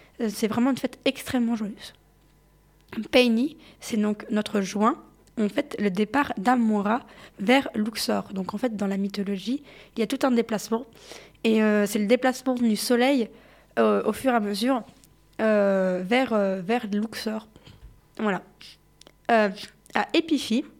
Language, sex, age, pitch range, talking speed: French, female, 20-39, 205-245 Hz, 150 wpm